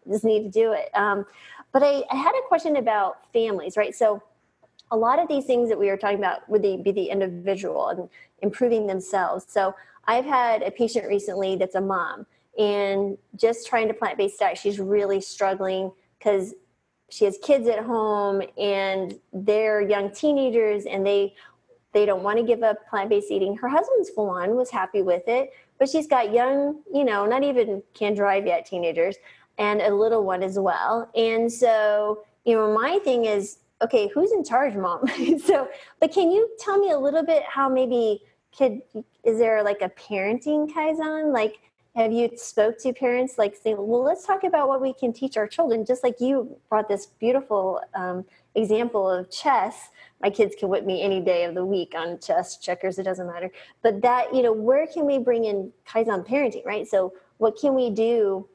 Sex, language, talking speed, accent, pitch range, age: female, English, 190 wpm, American, 200-255 Hz, 30-49